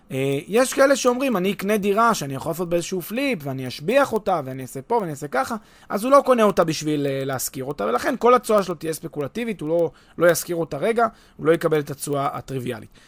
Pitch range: 145-215 Hz